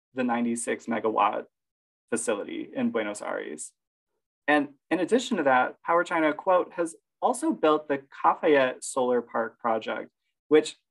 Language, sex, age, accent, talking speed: English, male, 20-39, American, 140 wpm